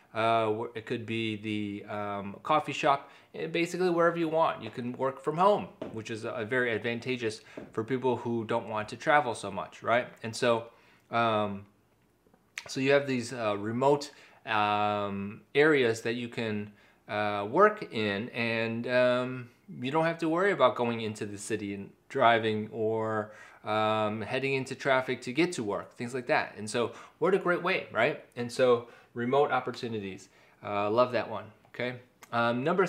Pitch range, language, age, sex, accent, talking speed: 110-140 Hz, English, 20-39, male, American, 170 wpm